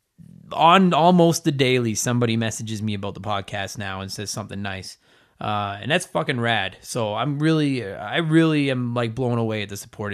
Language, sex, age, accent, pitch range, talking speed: English, male, 20-39, American, 110-145 Hz, 190 wpm